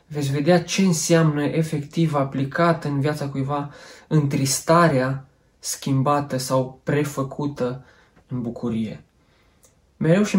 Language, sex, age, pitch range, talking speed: English, male, 20-39, 130-155 Hz, 100 wpm